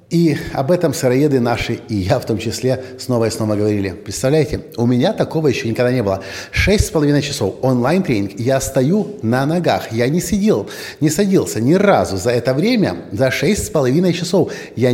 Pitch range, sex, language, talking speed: 110-165 Hz, male, Russian, 190 wpm